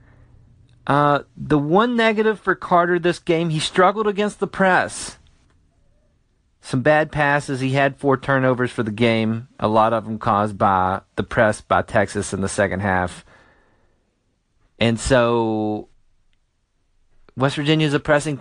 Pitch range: 95-135 Hz